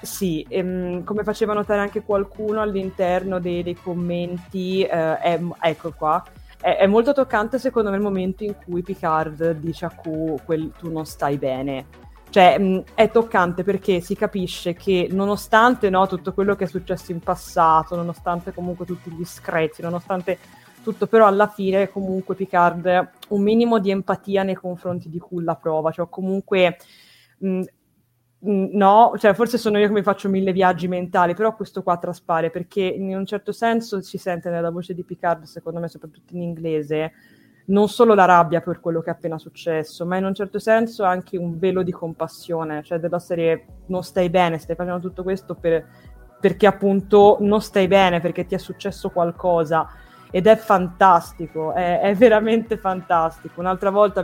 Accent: native